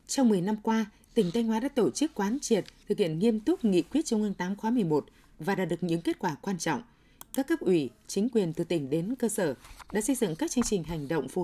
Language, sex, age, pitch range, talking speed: Vietnamese, female, 20-39, 180-230 Hz, 260 wpm